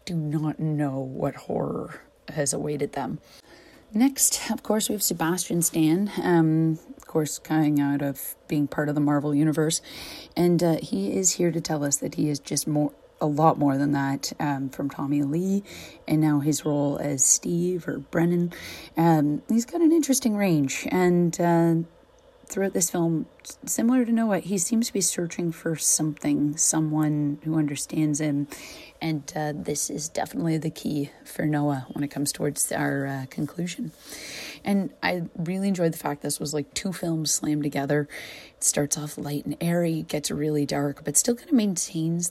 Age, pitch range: 30-49, 145-175 Hz